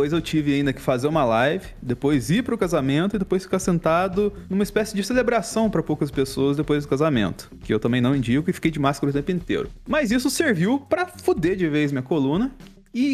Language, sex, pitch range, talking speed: Portuguese, male, 145-220 Hz, 225 wpm